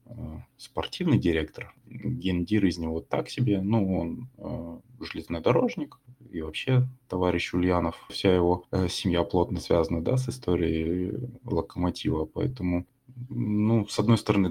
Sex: male